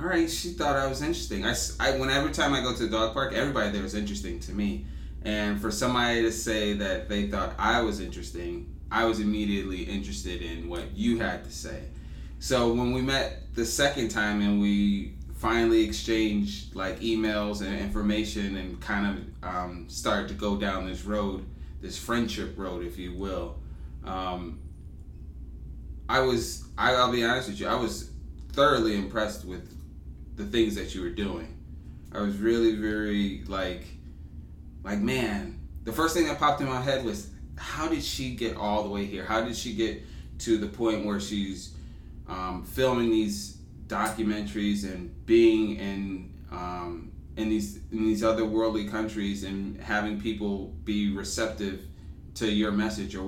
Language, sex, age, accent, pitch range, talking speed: English, male, 20-39, American, 75-110 Hz, 170 wpm